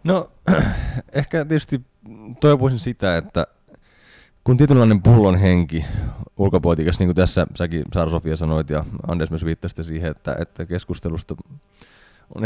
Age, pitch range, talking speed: 20-39, 80-100 Hz, 130 wpm